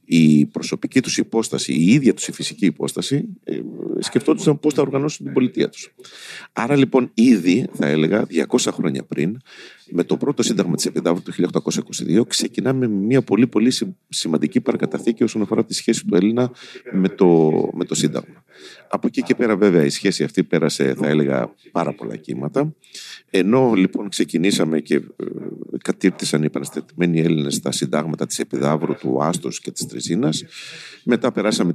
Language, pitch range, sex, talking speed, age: Greek, 80-130 Hz, male, 155 wpm, 40-59